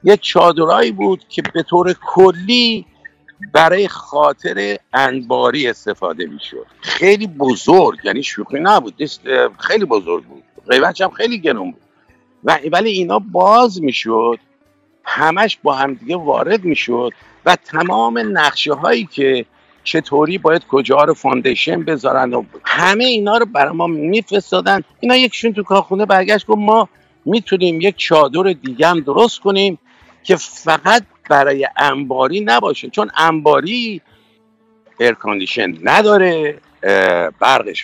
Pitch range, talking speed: 150-210 Hz, 125 wpm